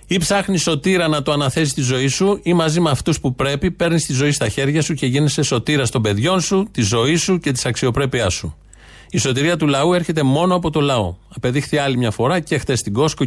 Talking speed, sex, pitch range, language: 235 wpm, male, 120-160 Hz, Greek